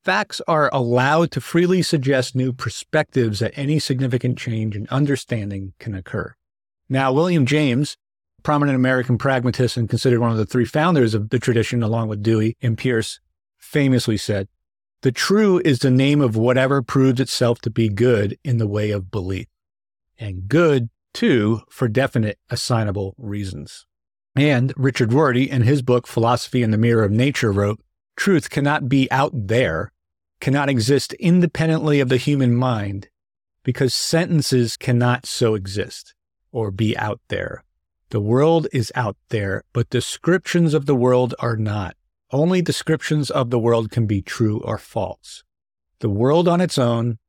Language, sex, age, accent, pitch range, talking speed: English, male, 50-69, American, 110-135 Hz, 155 wpm